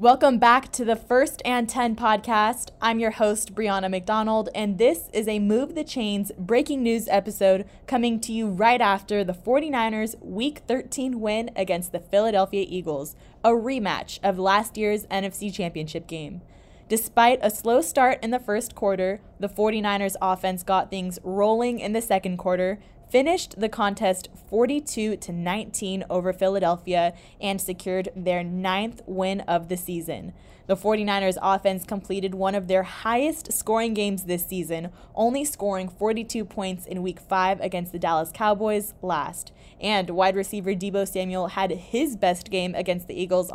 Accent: American